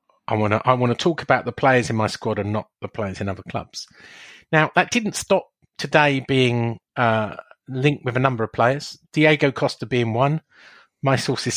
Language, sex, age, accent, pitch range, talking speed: English, male, 40-59, British, 115-140 Hz, 200 wpm